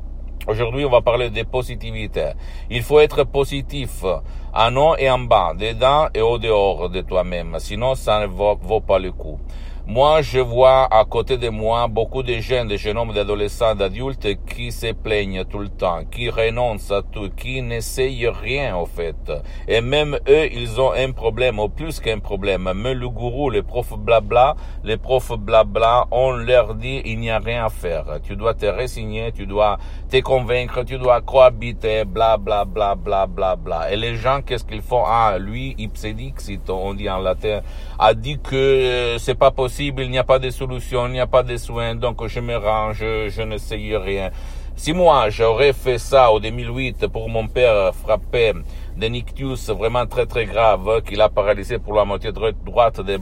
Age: 60-79